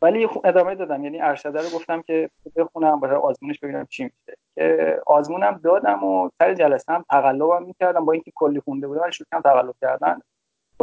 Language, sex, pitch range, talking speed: Persian, male, 140-190 Hz, 185 wpm